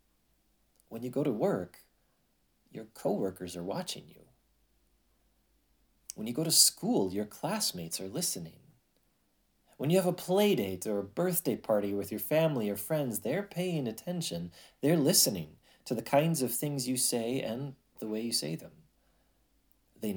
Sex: male